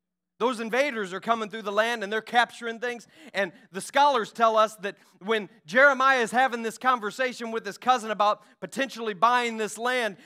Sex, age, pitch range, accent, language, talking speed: male, 40-59, 140-230 Hz, American, English, 180 wpm